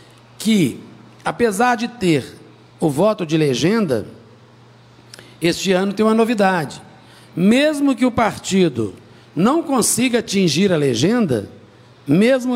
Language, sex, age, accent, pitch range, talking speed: Portuguese, male, 60-79, Brazilian, 150-230 Hz, 110 wpm